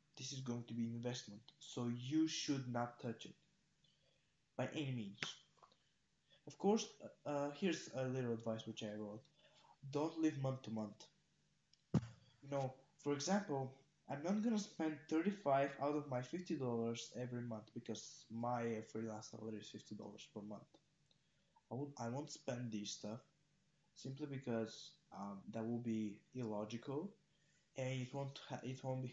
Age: 20-39